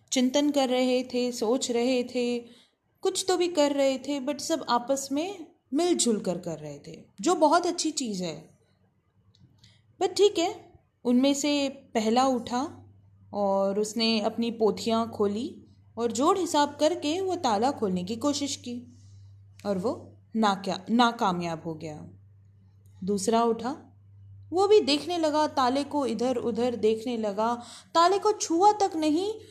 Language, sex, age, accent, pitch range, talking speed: Hindi, female, 20-39, native, 185-305 Hz, 150 wpm